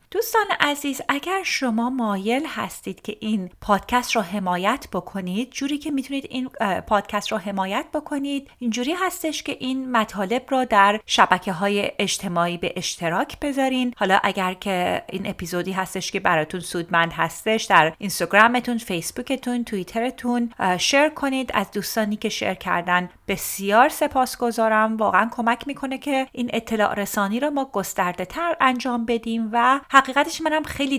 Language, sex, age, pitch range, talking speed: Persian, female, 30-49, 190-250 Hz, 135 wpm